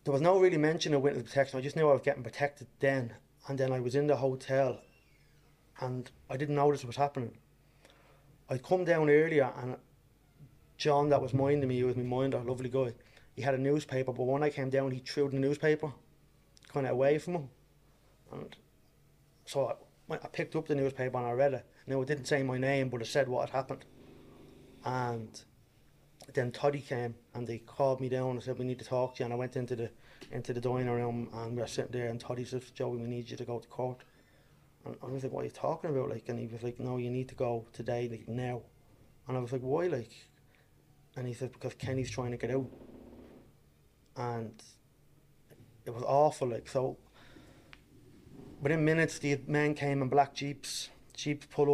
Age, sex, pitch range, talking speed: 30-49, male, 125-145 Hz, 215 wpm